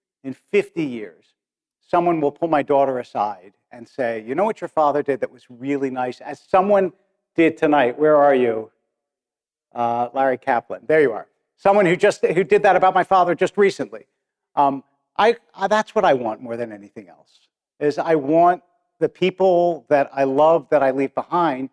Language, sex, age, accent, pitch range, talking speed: English, male, 50-69, American, 125-175 Hz, 190 wpm